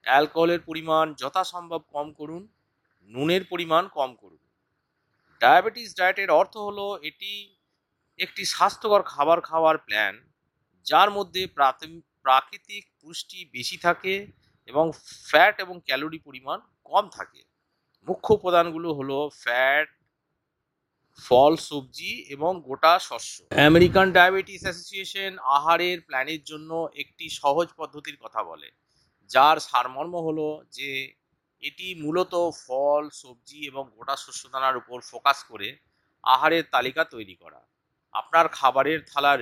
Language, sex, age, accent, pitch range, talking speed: English, male, 50-69, Indian, 140-175 Hz, 105 wpm